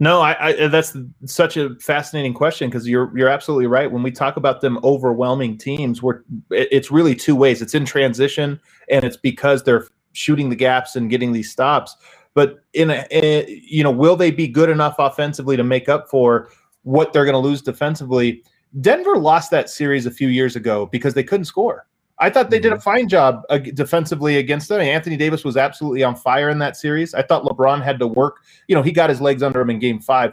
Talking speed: 220 wpm